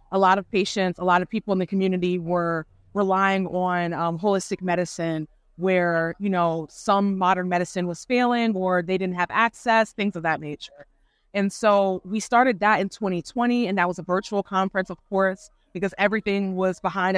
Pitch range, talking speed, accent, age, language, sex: 185-220 Hz, 185 wpm, American, 20-39, English, female